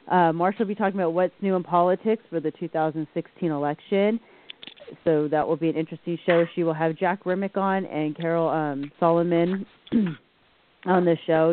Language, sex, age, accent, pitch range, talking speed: English, female, 30-49, American, 145-175 Hz, 175 wpm